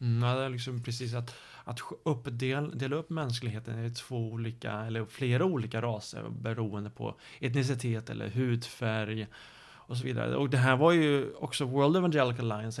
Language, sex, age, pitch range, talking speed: Swedish, male, 30-49, 115-140 Hz, 165 wpm